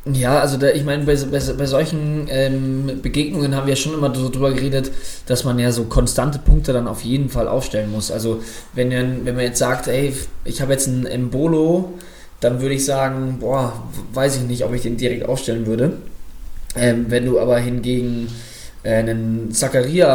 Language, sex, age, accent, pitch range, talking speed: German, male, 20-39, German, 115-130 Hz, 190 wpm